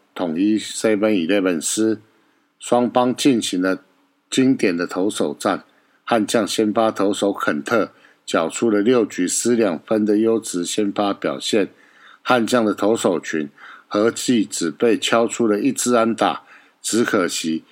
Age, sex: 50-69, male